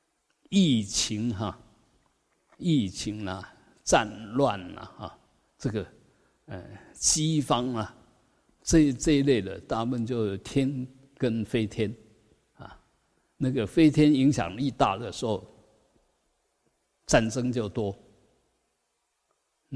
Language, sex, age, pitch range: Chinese, male, 50-69, 110-140 Hz